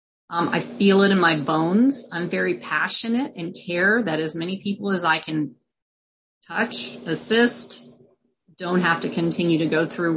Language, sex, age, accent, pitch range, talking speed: English, female, 30-49, American, 165-215 Hz, 170 wpm